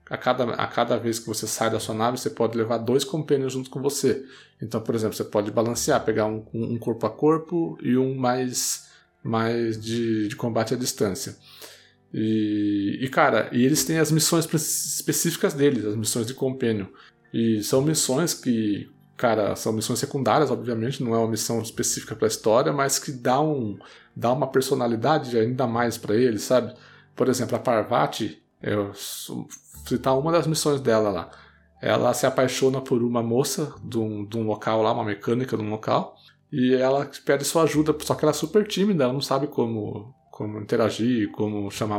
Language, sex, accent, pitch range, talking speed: Portuguese, male, Brazilian, 115-145 Hz, 185 wpm